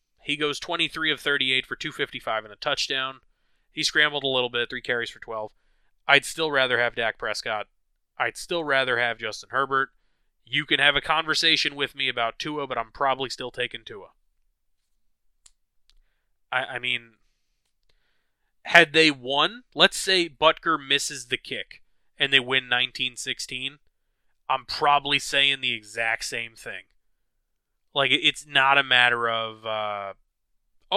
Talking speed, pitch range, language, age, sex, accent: 145 wpm, 120-160 Hz, English, 20-39, male, American